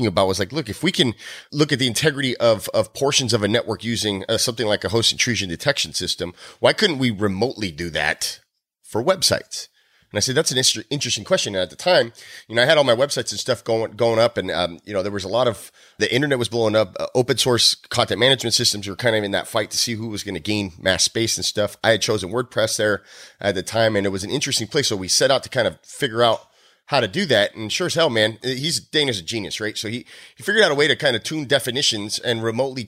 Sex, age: male, 30-49